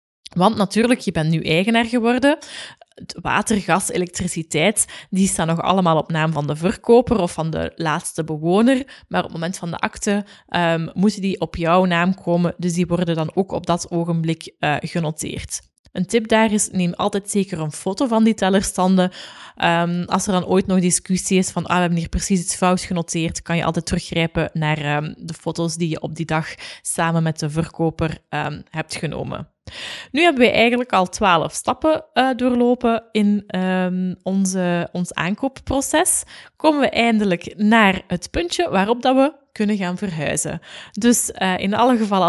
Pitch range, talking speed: 170-225 Hz, 175 wpm